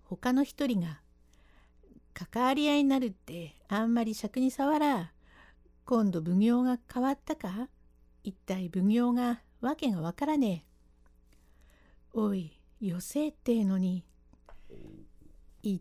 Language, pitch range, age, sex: Japanese, 170-260 Hz, 60-79, female